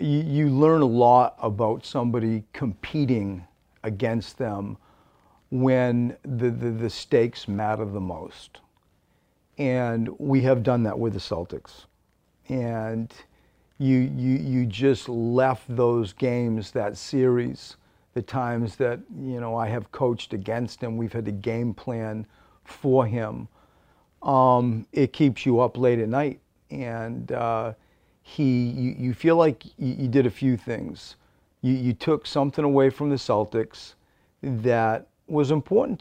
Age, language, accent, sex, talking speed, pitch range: 40-59, English, American, male, 140 wpm, 115-130 Hz